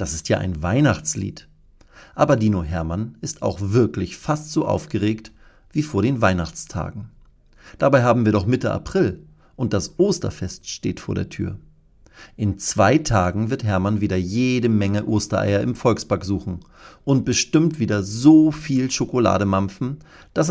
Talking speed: 145 wpm